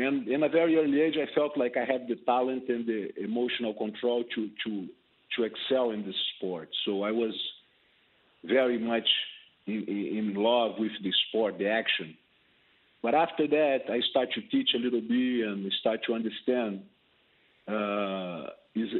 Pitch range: 105-125 Hz